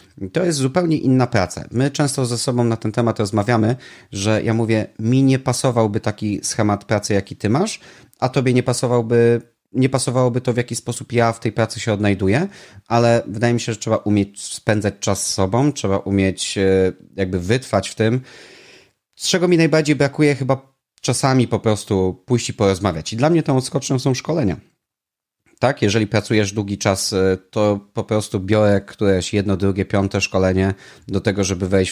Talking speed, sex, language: 180 wpm, male, Polish